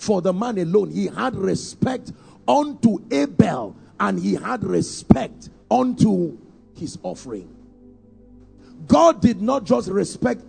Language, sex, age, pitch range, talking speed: English, male, 50-69, 185-255 Hz, 120 wpm